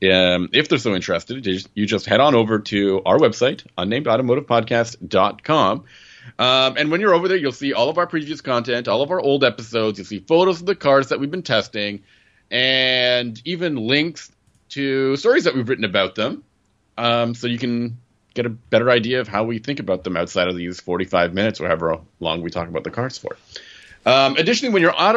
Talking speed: 200 wpm